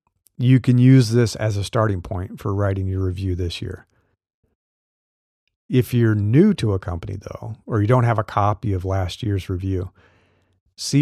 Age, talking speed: 40-59, 175 wpm